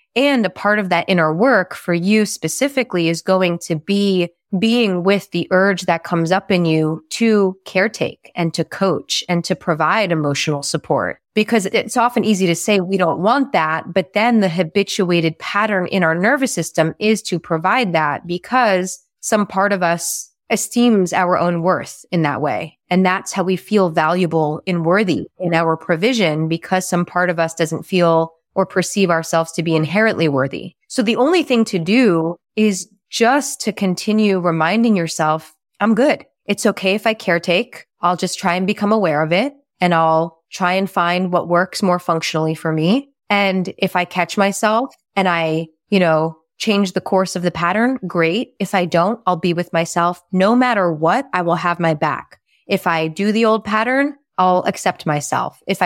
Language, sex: English, female